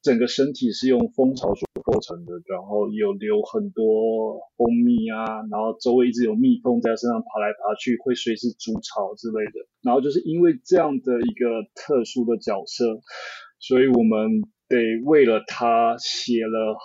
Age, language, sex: 20-39, Chinese, male